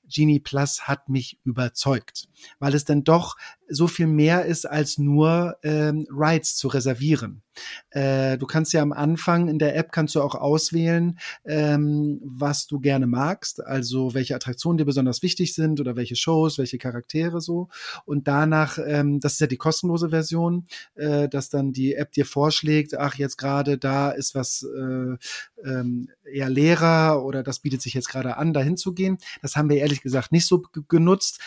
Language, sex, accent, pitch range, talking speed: German, male, German, 135-155 Hz, 175 wpm